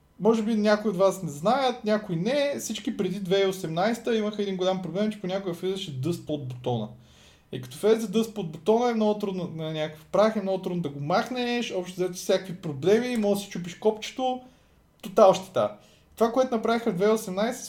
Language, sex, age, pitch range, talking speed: Bulgarian, male, 20-39, 155-220 Hz, 195 wpm